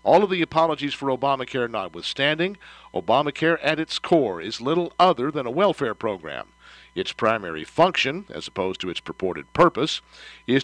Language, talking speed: English, 160 wpm